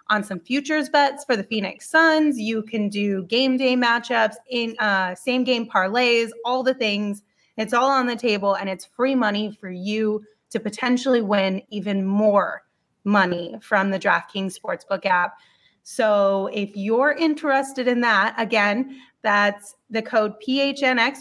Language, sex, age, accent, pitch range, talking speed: English, female, 30-49, American, 205-260 Hz, 155 wpm